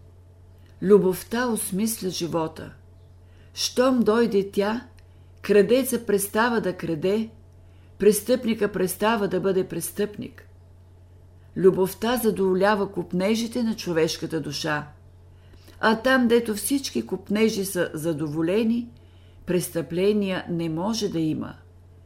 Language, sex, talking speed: Bulgarian, female, 90 wpm